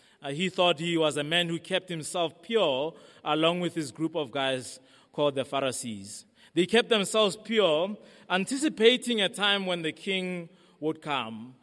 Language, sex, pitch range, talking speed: English, male, 140-180 Hz, 165 wpm